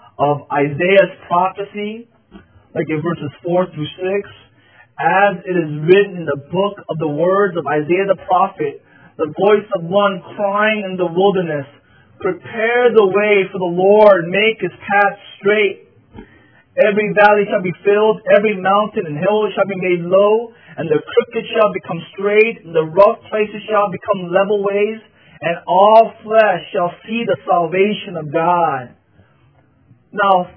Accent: American